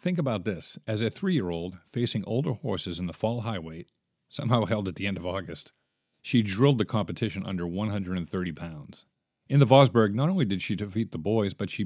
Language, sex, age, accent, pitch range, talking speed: English, male, 50-69, American, 90-125 Hz, 200 wpm